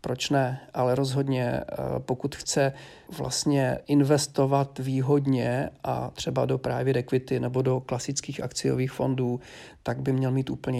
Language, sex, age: Czech, male, 40-59